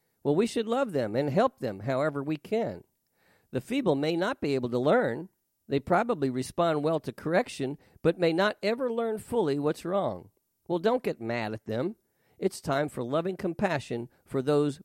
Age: 50-69